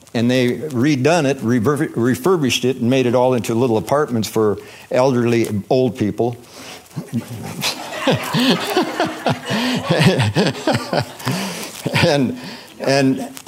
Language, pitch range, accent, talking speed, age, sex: English, 115-145 Hz, American, 85 wpm, 60-79, male